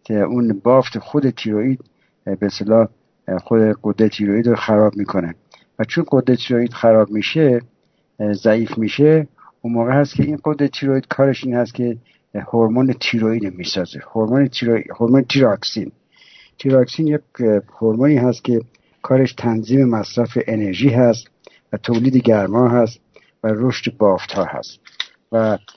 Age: 60-79